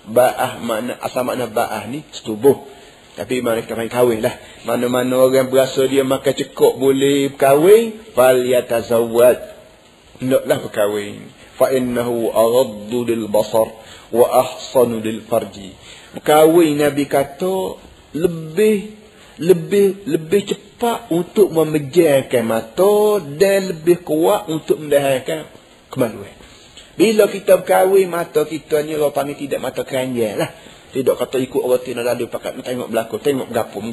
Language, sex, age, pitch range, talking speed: Malay, male, 50-69, 125-185 Hz, 120 wpm